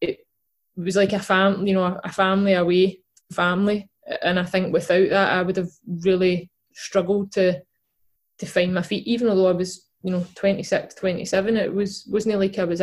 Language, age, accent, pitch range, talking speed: English, 20-39, British, 180-200 Hz, 200 wpm